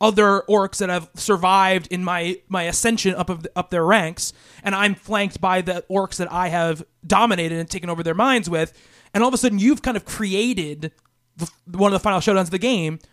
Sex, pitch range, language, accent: male, 170-200 Hz, English, American